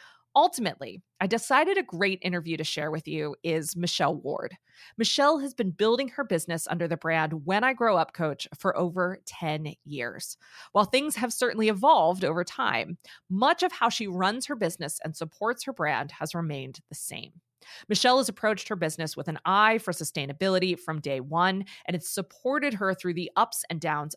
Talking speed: 185 wpm